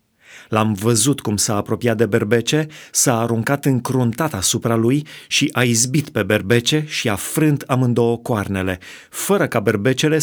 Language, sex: Romanian, male